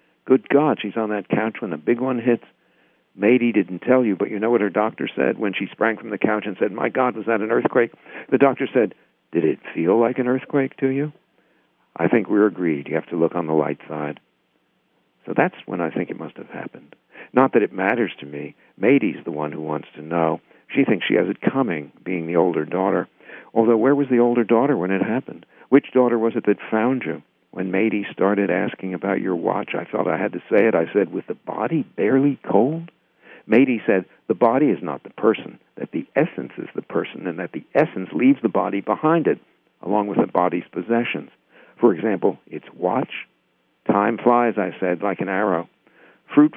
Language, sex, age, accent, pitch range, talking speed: English, male, 60-79, American, 90-120 Hz, 215 wpm